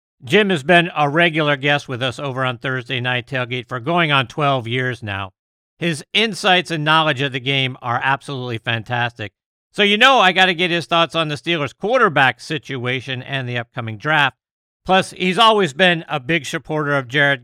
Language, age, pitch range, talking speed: English, 50-69, 130-170 Hz, 195 wpm